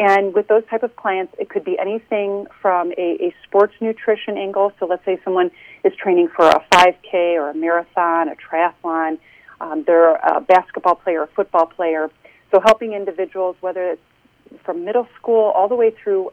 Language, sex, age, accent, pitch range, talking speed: English, female, 40-59, American, 170-230 Hz, 185 wpm